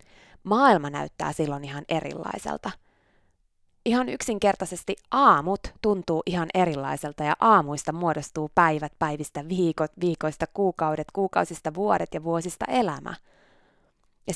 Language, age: Finnish, 20-39